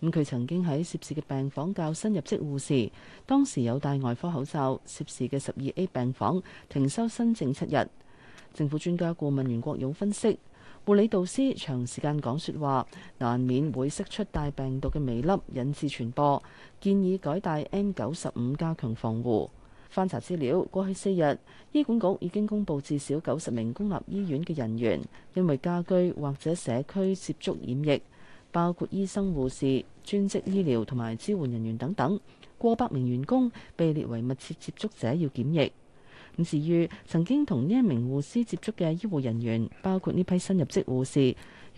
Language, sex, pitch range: Chinese, female, 130-185 Hz